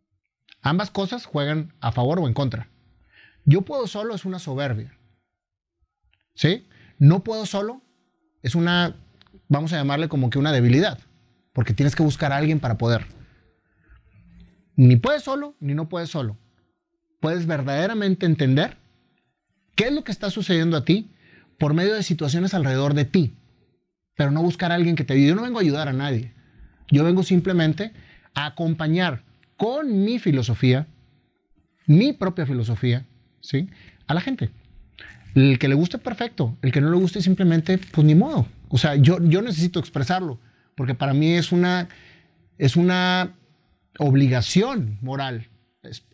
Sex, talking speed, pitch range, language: male, 155 wpm, 125-175 Hz, Spanish